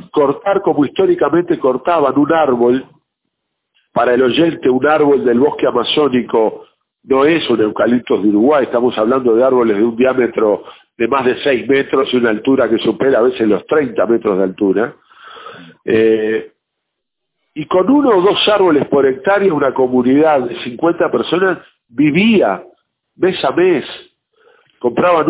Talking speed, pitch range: 150 wpm, 115-170 Hz